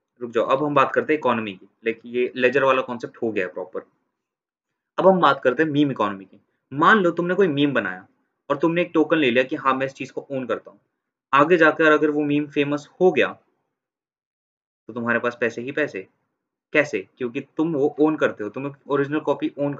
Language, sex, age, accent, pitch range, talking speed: Hindi, male, 20-39, native, 125-150 Hz, 75 wpm